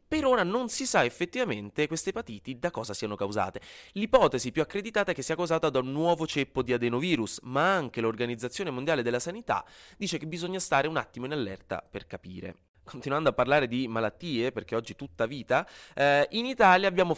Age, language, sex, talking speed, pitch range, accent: 20-39, Italian, male, 190 wpm, 115-170 Hz, native